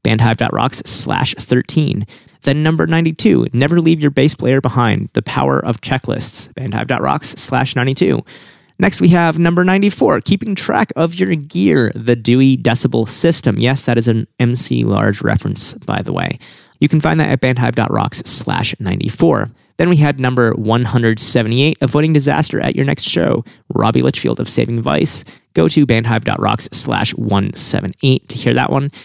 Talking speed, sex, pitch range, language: 155 wpm, male, 115-150 Hz, English